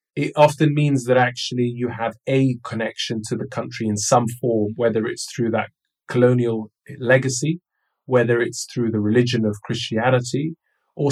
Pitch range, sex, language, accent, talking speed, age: 110-130 Hz, male, English, British, 155 wpm, 20-39